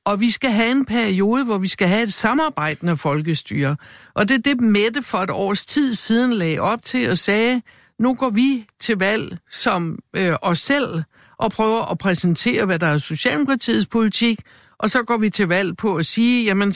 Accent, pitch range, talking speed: native, 195-245 Hz, 205 wpm